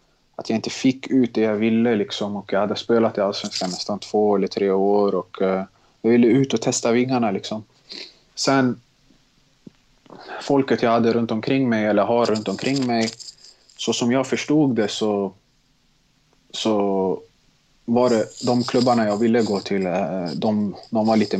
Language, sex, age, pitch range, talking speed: English, male, 30-49, 100-115 Hz, 170 wpm